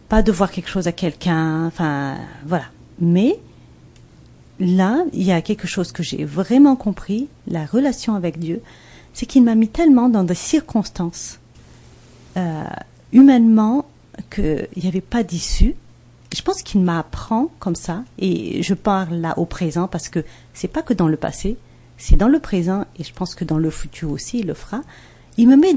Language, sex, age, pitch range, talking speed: English, female, 40-59, 165-235 Hz, 180 wpm